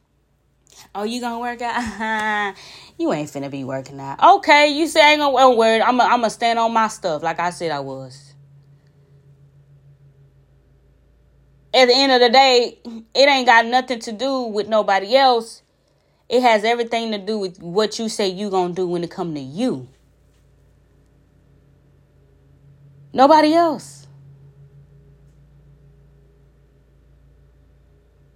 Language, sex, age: English, female, 20-39